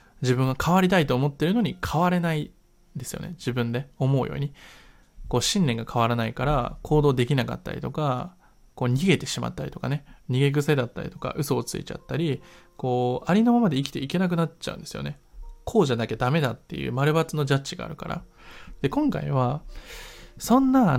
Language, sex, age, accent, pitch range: Japanese, male, 20-39, native, 125-175 Hz